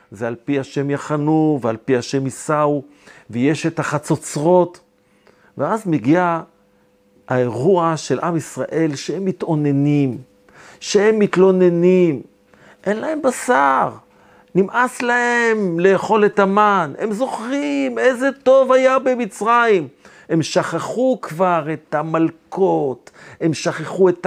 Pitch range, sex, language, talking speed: 145-195 Hz, male, Hebrew, 110 wpm